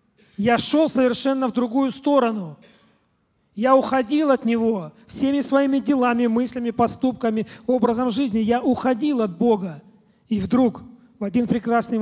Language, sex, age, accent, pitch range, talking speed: Russian, male, 40-59, native, 220-255 Hz, 130 wpm